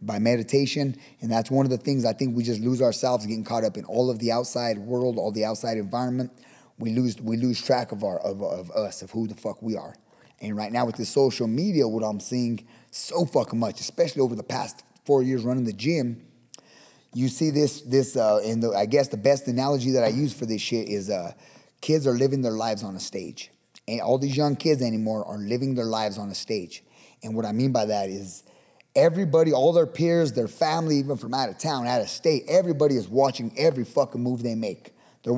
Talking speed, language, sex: 230 wpm, English, male